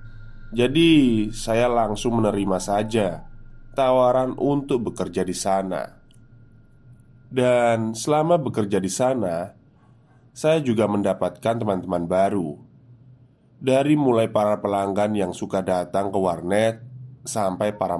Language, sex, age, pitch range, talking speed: Indonesian, male, 20-39, 95-125 Hz, 105 wpm